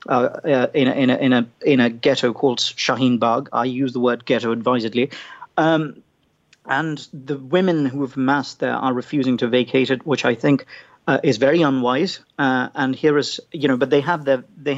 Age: 40-59